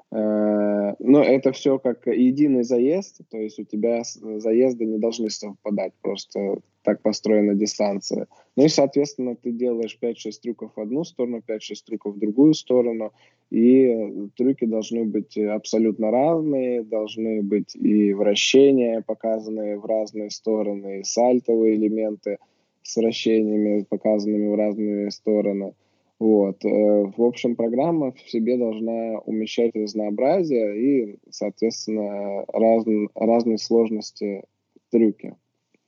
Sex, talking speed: male, 120 wpm